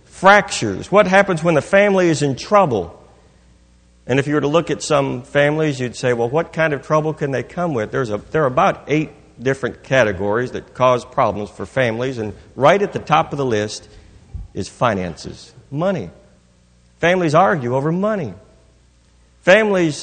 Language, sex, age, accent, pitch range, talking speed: English, male, 50-69, American, 110-170 Hz, 175 wpm